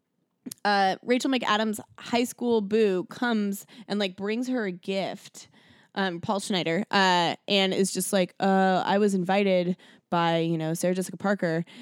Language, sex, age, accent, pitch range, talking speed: English, female, 20-39, American, 180-230 Hz, 155 wpm